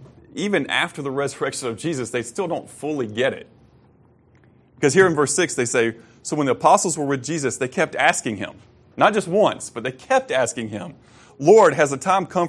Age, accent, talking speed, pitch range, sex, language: 30-49, American, 205 wpm, 115-140 Hz, male, English